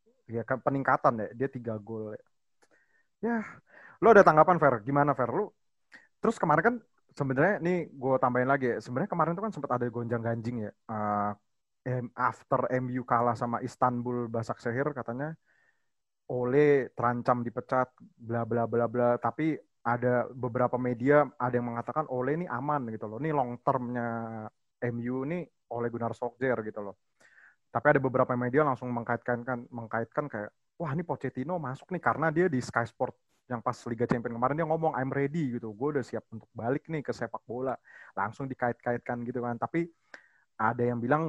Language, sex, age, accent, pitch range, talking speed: Indonesian, male, 20-39, native, 120-145 Hz, 165 wpm